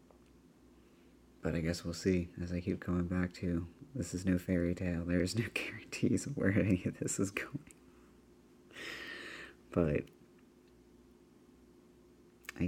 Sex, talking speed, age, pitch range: male, 135 wpm, 30-49, 90-95 Hz